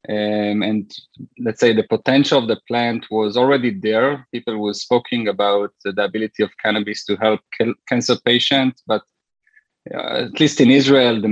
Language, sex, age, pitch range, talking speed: English, male, 20-39, 105-125 Hz, 170 wpm